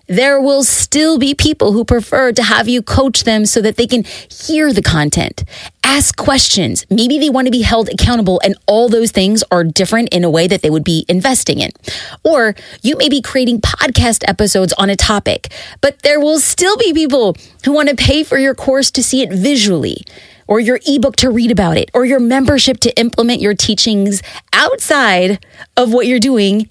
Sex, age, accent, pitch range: female, 30-49, American, 200-270 Hz